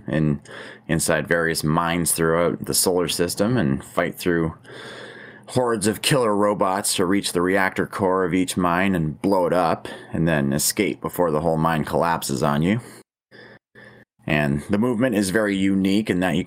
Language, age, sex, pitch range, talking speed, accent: English, 30-49, male, 80-95 Hz, 170 wpm, American